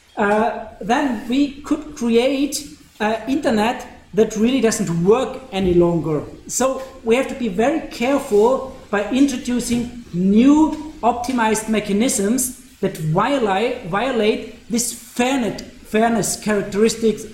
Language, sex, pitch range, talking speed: German, male, 200-255 Hz, 115 wpm